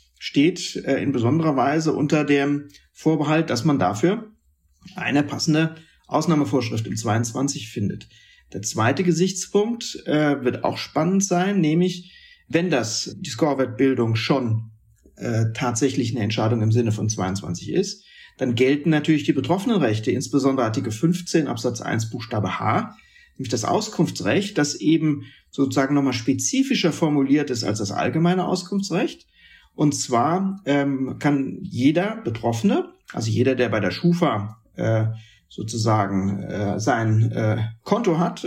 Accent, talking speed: German, 135 wpm